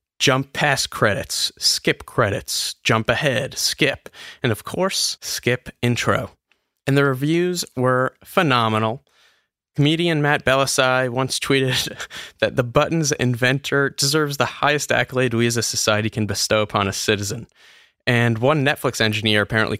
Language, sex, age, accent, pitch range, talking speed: English, male, 20-39, American, 110-140 Hz, 135 wpm